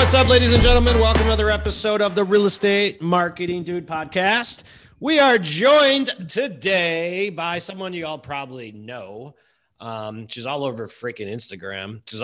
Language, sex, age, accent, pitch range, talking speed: English, male, 30-49, American, 120-175 Hz, 160 wpm